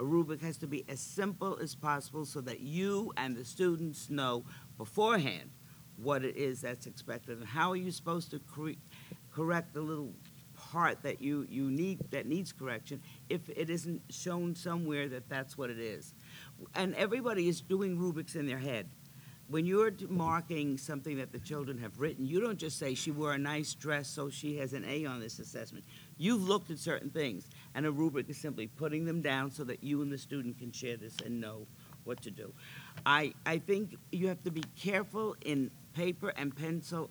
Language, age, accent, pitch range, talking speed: English, 50-69, American, 140-175 Hz, 200 wpm